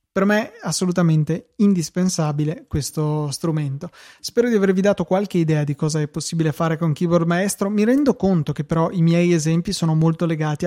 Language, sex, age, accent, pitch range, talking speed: Italian, male, 20-39, native, 155-185 Hz, 180 wpm